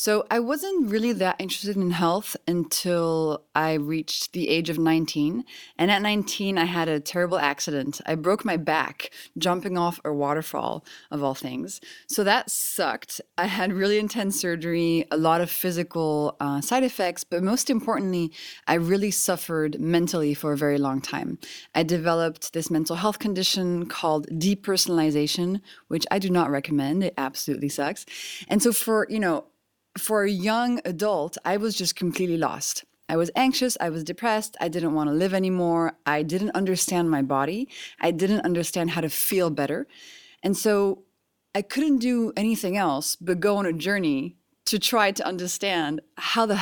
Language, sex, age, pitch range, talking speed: English, female, 20-39, 160-205 Hz, 170 wpm